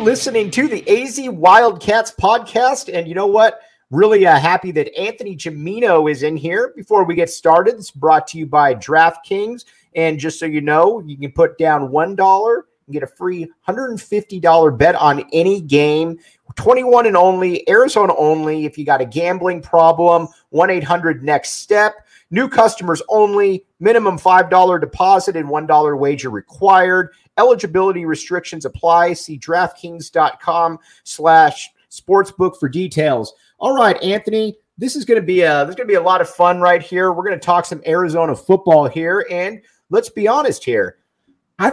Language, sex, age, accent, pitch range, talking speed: English, male, 40-59, American, 160-225 Hz, 160 wpm